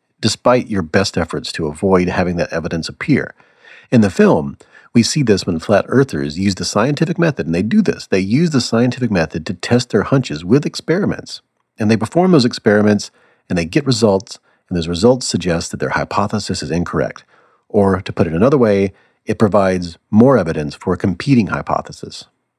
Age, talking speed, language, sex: 40-59, 185 wpm, English, male